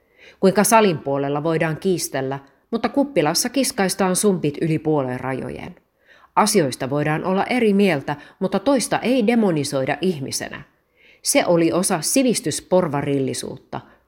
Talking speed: 110 wpm